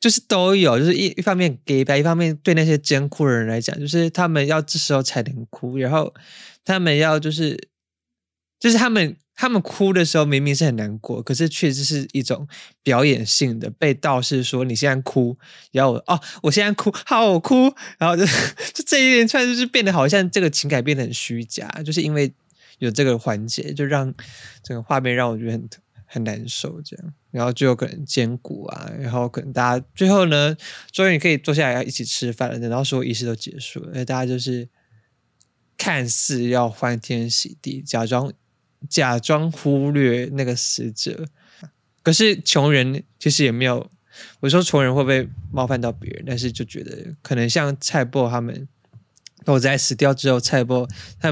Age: 20-39